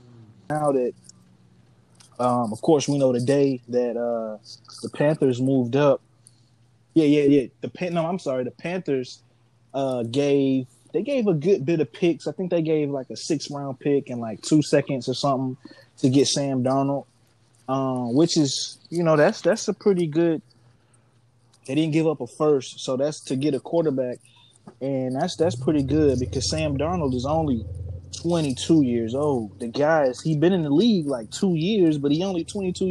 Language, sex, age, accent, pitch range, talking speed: English, male, 20-39, American, 120-150 Hz, 190 wpm